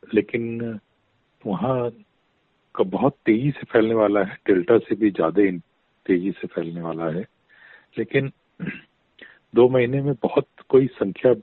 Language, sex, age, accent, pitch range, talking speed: Hindi, male, 40-59, native, 100-125 Hz, 125 wpm